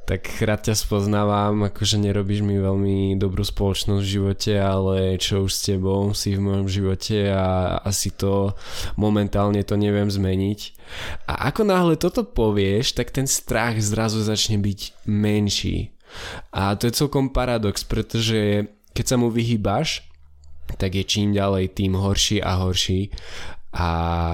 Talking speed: 145 wpm